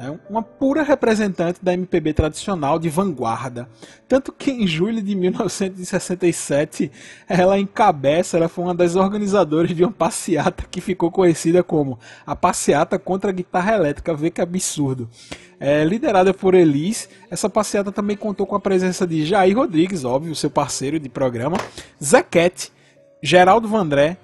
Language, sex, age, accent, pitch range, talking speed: Portuguese, male, 20-39, Brazilian, 160-200 Hz, 150 wpm